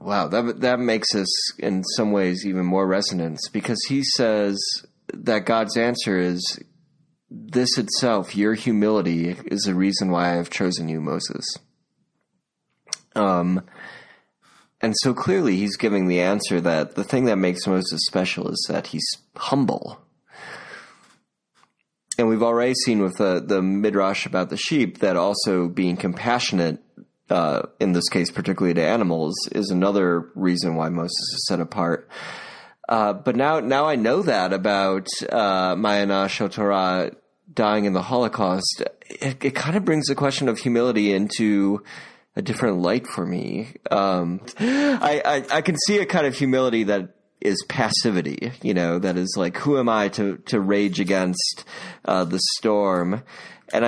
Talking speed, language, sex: 155 wpm, English, male